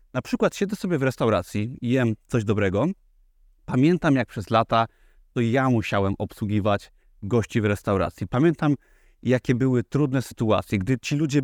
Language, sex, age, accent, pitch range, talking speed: Polish, male, 30-49, native, 110-140 Hz, 145 wpm